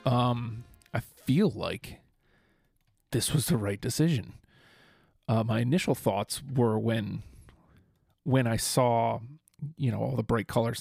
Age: 40-59